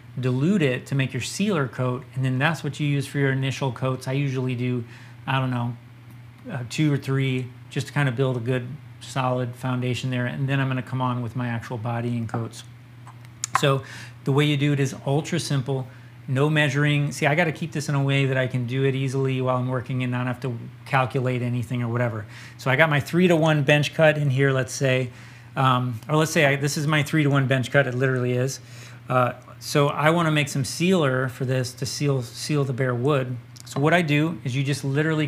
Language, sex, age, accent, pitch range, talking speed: English, male, 30-49, American, 125-145 Hz, 230 wpm